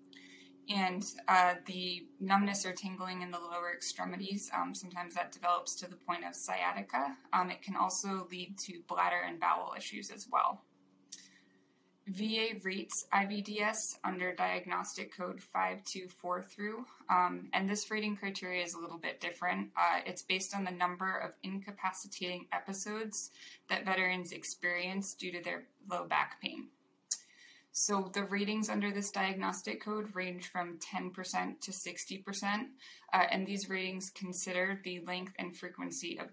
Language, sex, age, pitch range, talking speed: English, female, 20-39, 175-195 Hz, 145 wpm